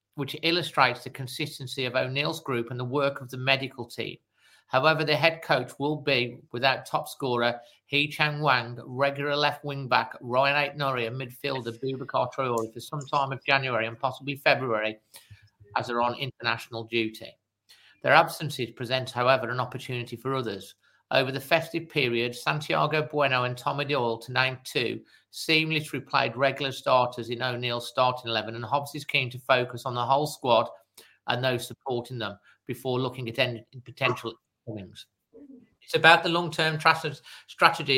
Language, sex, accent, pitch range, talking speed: English, male, British, 120-145 Hz, 160 wpm